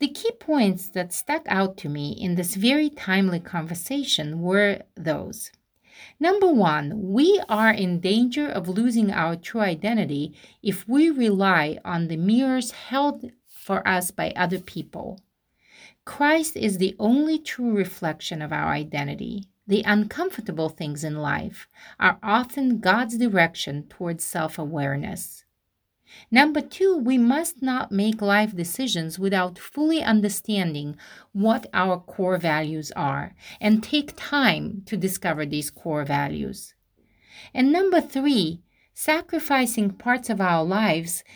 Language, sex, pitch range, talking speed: English, female, 170-245 Hz, 130 wpm